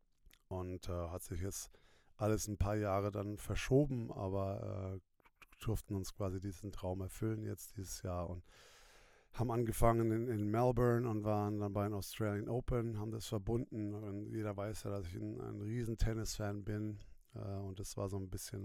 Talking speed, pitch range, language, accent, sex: 180 wpm, 95-110 Hz, German, German, male